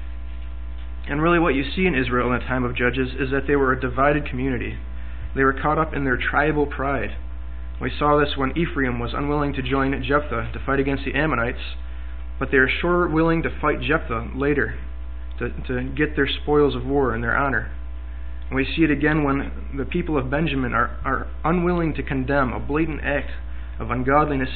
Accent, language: American, English